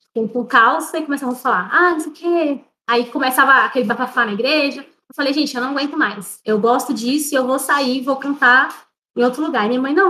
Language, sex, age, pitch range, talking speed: Portuguese, female, 20-39, 230-290 Hz, 230 wpm